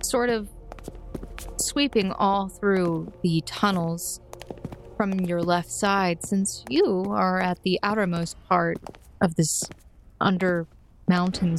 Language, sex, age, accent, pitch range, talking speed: English, female, 20-39, American, 175-215 Hz, 110 wpm